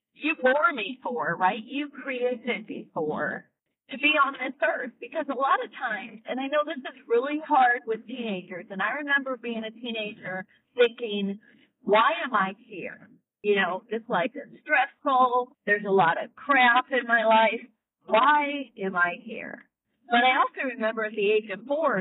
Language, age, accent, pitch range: English, 40-59, American, 195-275 Hz